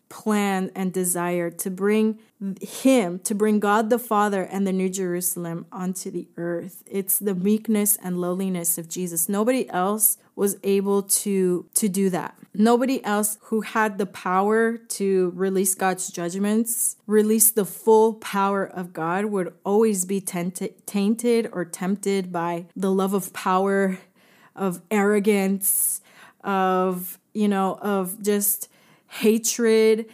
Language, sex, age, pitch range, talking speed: Spanish, female, 20-39, 185-215 Hz, 135 wpm